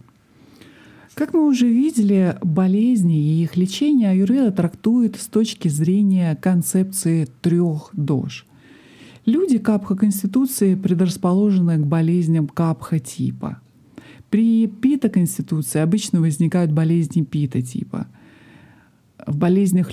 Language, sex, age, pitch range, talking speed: Russian, male, 50-69, 160-215 Hz, 90 wpm